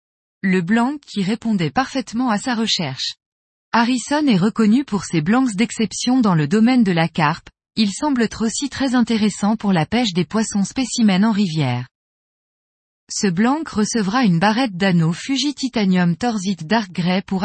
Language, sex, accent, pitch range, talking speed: French, female, French, 180-240 Hz, 160 wpm